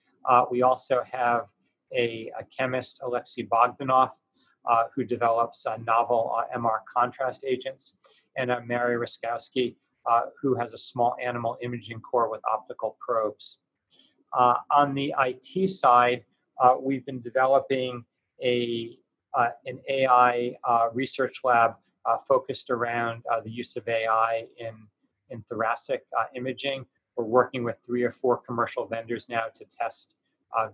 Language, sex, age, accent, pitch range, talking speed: English, male, 40-59, American, 115-130 Hz, 145 wpm